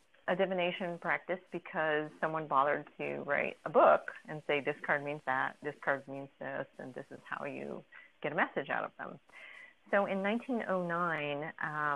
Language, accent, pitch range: English, American, 150-190 Hz